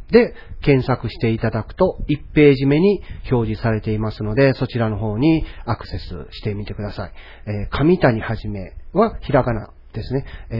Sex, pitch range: male, 95-150 Hz